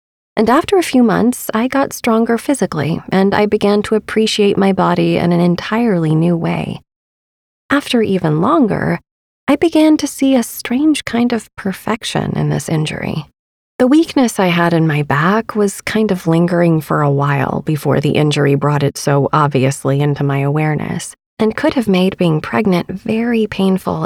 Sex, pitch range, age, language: female, 160-220 Hz, 30-49, English